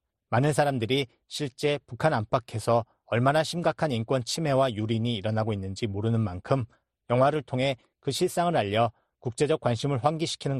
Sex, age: male, 40-59